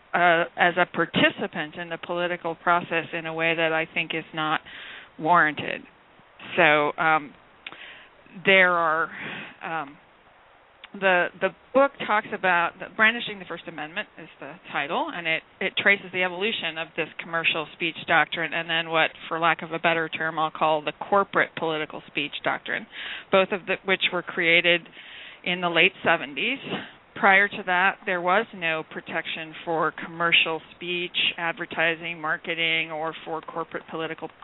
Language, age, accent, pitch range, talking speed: English, 40-59, American, 165-210 Hz, 155 wpm